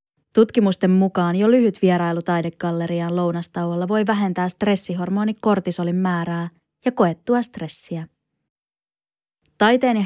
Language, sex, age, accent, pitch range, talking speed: Finnish, female, 20-39, native, 175-215 Hz, 100 wpm